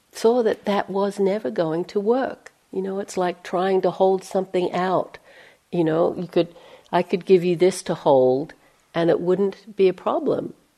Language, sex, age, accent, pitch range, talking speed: English, female, 60-79, American, 165-210 Hz, 190 wpm